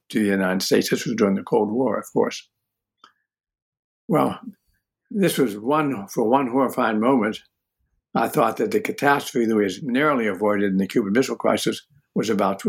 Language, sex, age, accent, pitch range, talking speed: English, male, 60-79, American, 105-140 Hz, 180 wpm